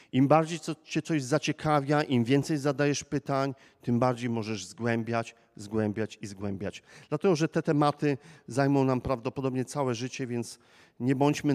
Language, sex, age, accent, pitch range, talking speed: Polish, male, 40-59, native, 120-165 Hz, 145 wpm